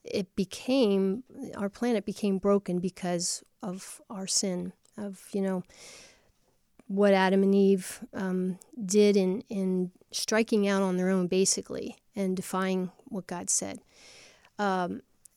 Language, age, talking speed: English, 40-59, 130 wpm